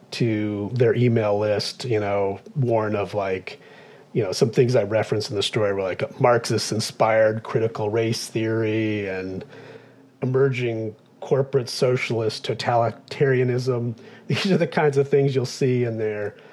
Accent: American